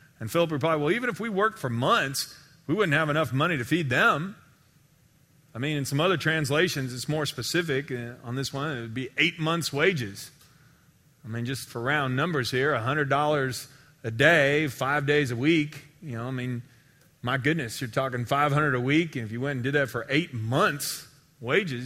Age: 30-49